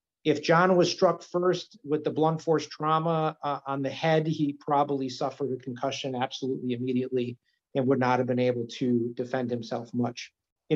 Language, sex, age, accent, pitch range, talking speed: English, male, 50-69, American, 130-155 Hz, 180 wpm